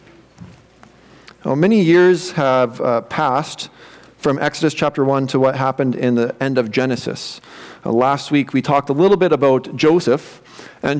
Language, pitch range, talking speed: English, 130-170 Hz, 160 wpm